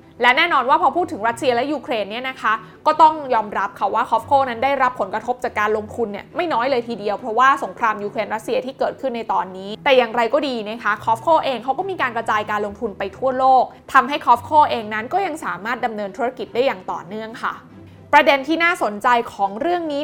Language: Thai